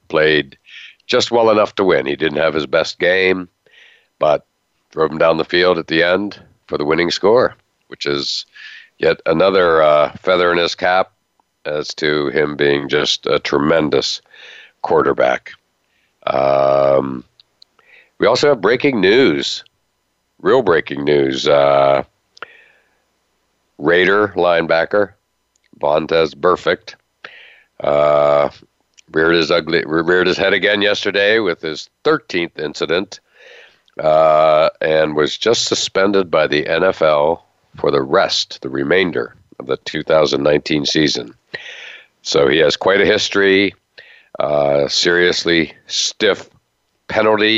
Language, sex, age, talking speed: English, male, 60-79, 120 wpm